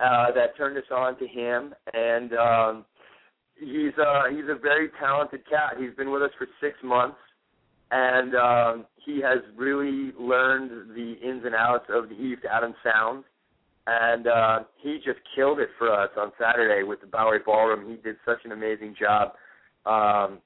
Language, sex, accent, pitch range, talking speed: English, male, American, 115-135 Hz, 175 wpm